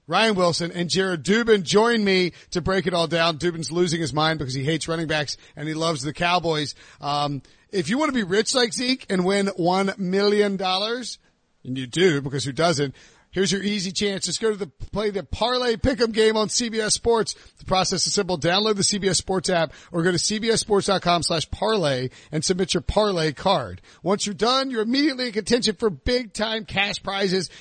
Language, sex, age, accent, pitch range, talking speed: English, male, 40-59, American, 155-205 Hz, 200 wpm